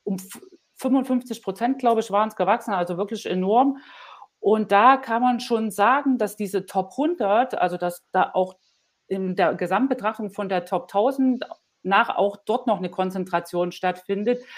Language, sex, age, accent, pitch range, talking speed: German, female, 40-59, German, 185-240 Hz, 160 wpm